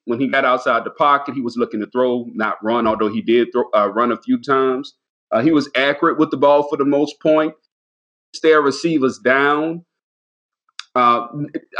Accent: American